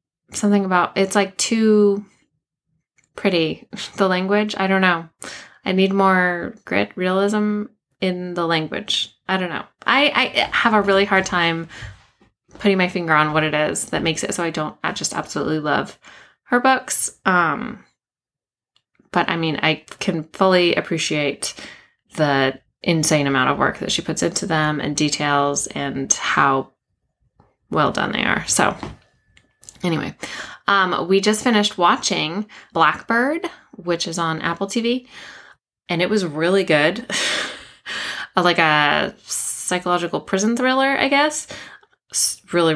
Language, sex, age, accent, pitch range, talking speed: English, female, 20-39, American, 160-205 Hz, 140 wpm